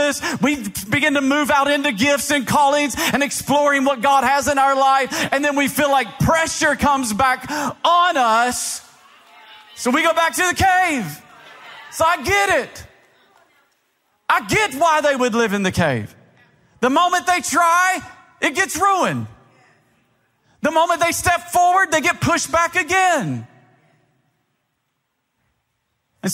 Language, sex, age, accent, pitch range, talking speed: English, male, 40-59, American, 230-320 Hz, 150 wpm